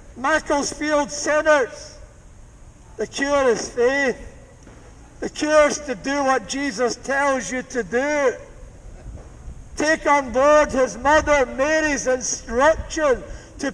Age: 60-79